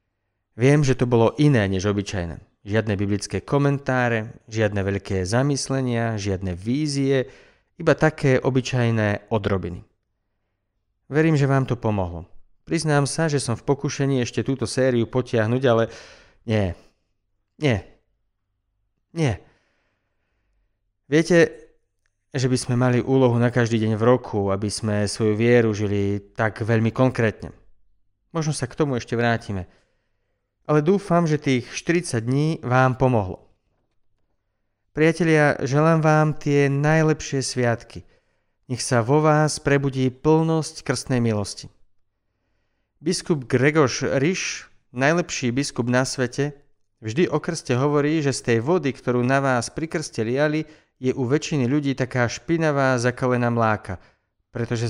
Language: Slovak